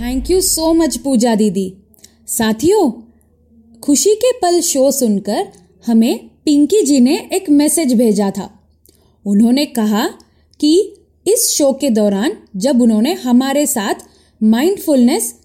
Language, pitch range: Hindi, 220-325 Hz